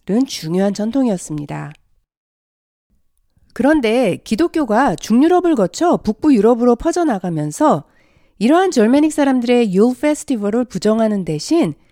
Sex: female